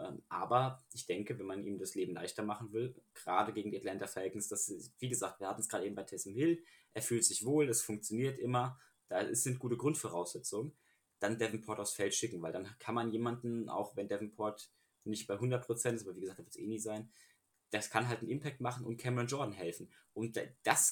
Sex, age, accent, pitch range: male, 20-39, German, 110-130 Hz